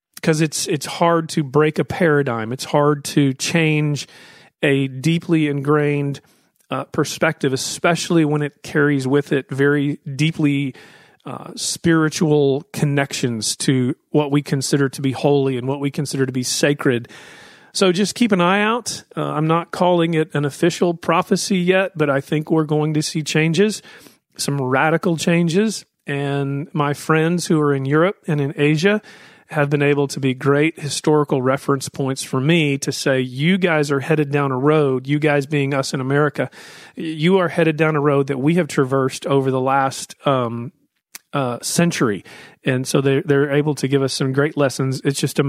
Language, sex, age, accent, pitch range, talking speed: English, male, 40-59, American, 135-160 Hz, 175 wpm